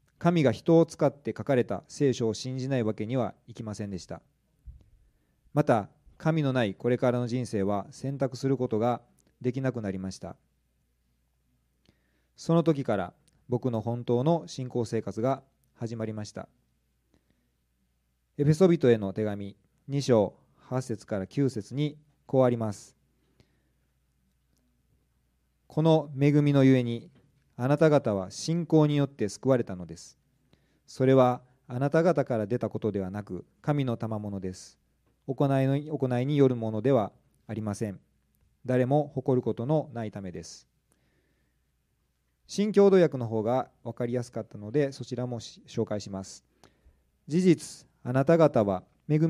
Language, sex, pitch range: Japanese, male, 100-140 Hz